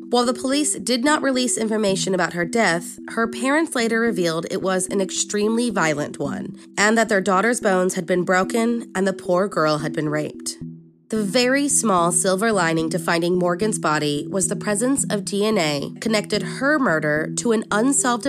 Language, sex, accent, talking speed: English, female, American, 180 wpm